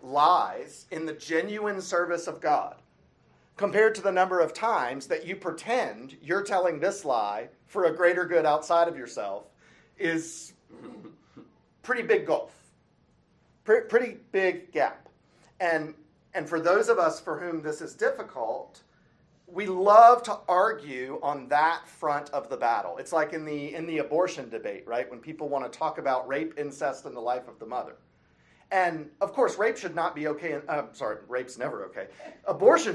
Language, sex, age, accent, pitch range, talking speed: English, male, 40-59, American, 155-215 Hz, 170 wpm